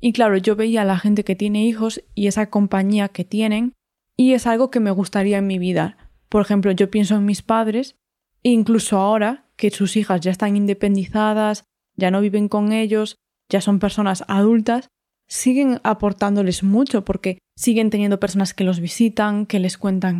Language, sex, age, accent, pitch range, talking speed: Spanish, female, 20-39, Spanish, 195-220 Hz, 185 wpm